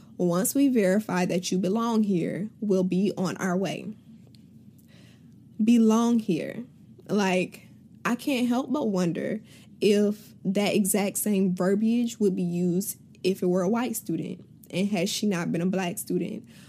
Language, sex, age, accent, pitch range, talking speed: English, female, 10-29, American, 185-215 Hz, 150 wpm